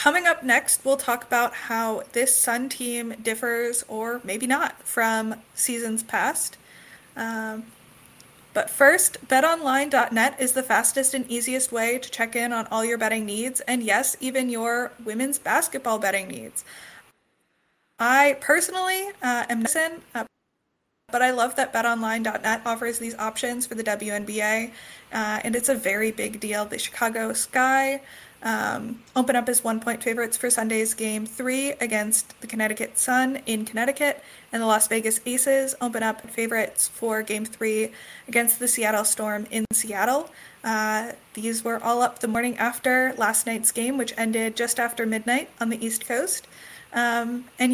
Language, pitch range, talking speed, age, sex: English, 225-255 Hz, 155 wpm, 20-39, female